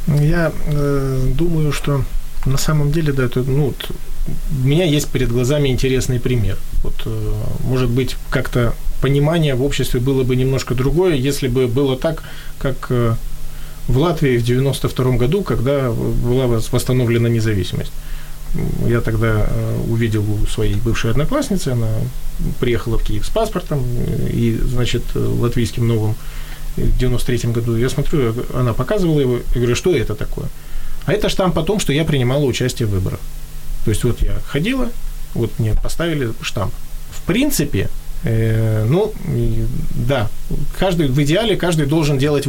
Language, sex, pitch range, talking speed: Ukrainian, male, 115-145 Hz, 145 wpm